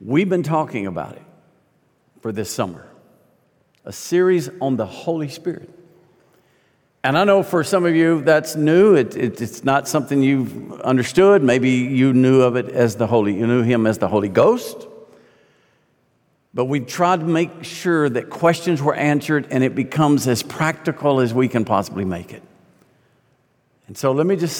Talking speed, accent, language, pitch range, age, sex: 175 wpm, American, English, 115-160 Hz, 50-69, male